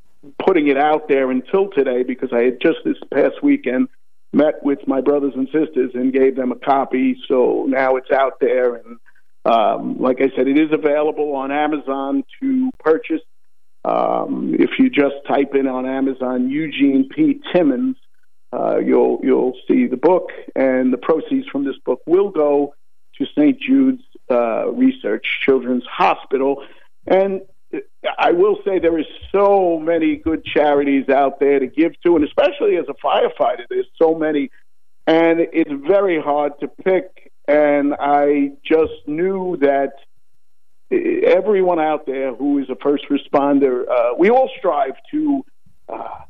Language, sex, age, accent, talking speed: English, male, 50-69, American, 155 wpm